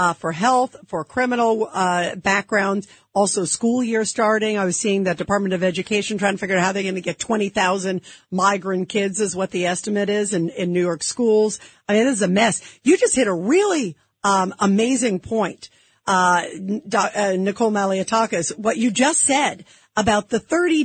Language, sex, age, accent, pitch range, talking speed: English, female, 50-69, American, 200-260 Hz, 185 wpm